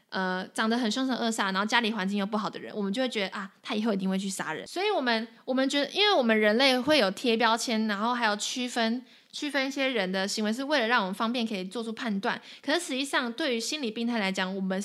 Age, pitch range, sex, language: 20-39, 195-245 Hz, female, Chinese